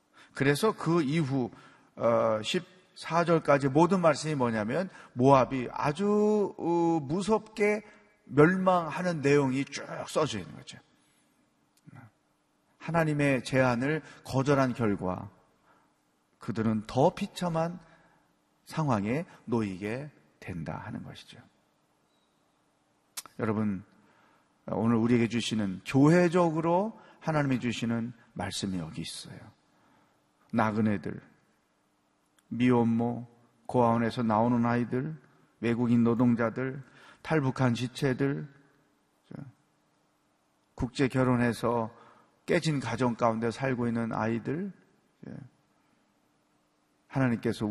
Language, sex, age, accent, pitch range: Korean, male, 40-59, native, 115-155 Hz